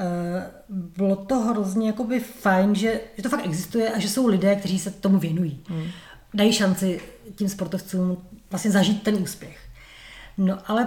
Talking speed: 155 wpm